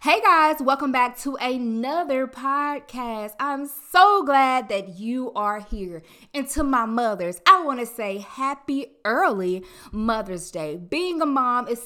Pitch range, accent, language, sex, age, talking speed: 200-280 Hz, American, English, female, 20-39, 145 wpm